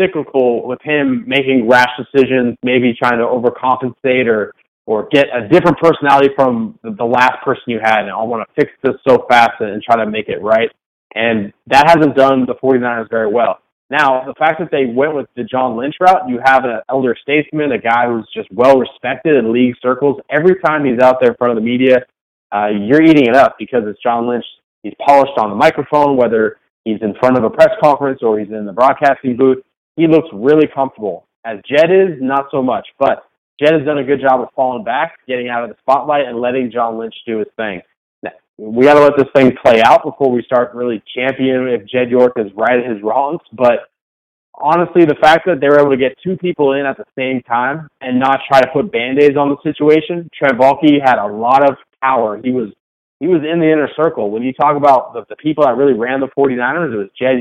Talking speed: 225 wpm